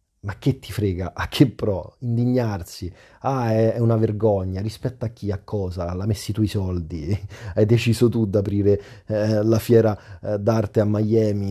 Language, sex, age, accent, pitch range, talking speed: Italian, male, 30-49, native, 100-125 Hz, 165 wpm